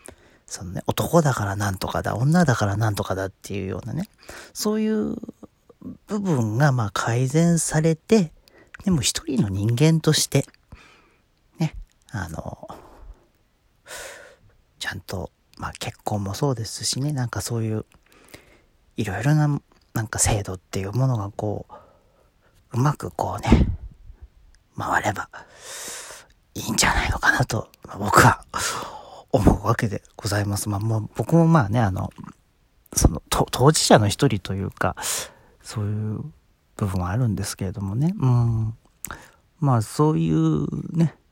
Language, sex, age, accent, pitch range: Japanese, male, 40-59, native, 100-145 Hz